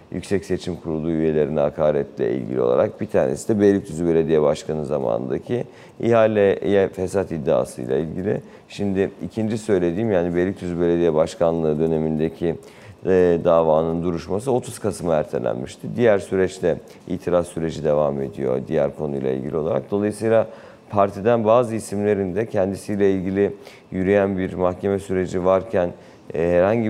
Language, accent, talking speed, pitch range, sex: Turkish, native, 125 wpm, 85-100 Hz, male